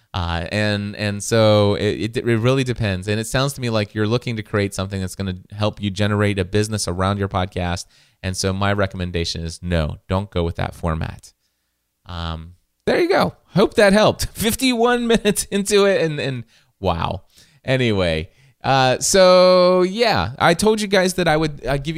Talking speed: 185 wpm